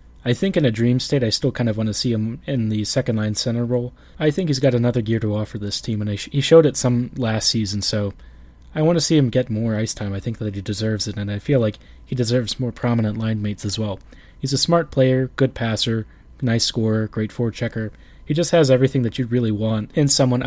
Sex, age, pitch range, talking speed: male, 20-39, 110-130 Hz, 255 wpm